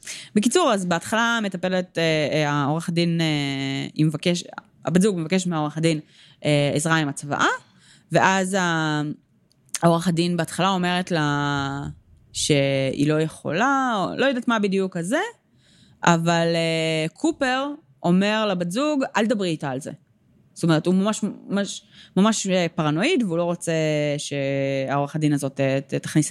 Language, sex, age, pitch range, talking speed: Hebrew, female, 20-39, 145-210 Hz, 130 wpm